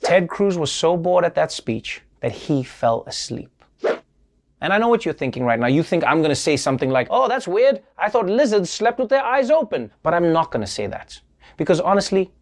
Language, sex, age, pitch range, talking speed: English, male, 30-49, 150-215 Hz, 220 wpm